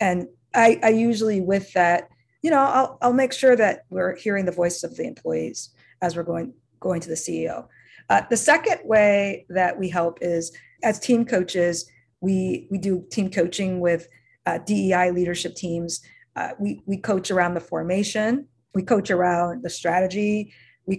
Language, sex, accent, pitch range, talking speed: English, female, American, 180-230 Hz, 175 wpm